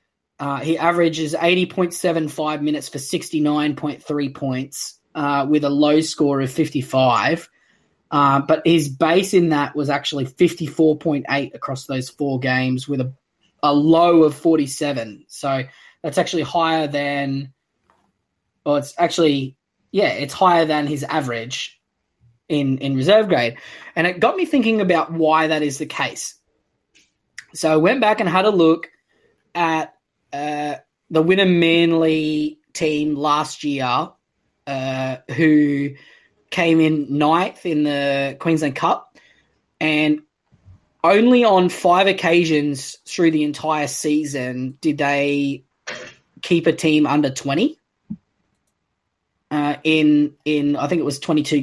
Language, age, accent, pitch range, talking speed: English, 20-39, Australian, 140-165 Hz, 130 wpm